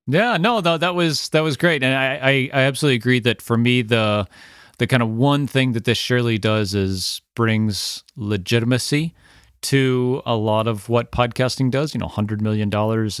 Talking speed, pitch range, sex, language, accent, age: 185 wpm, 100-125 Hz, male, English, American, 30-49